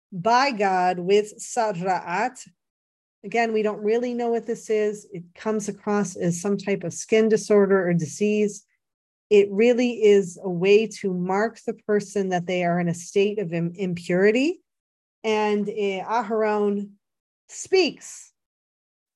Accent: American